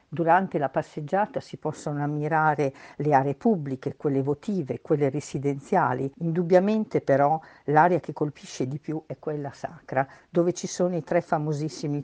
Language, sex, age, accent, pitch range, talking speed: Italian, female, 50-69, native, 145-180 Hz, 145 wpm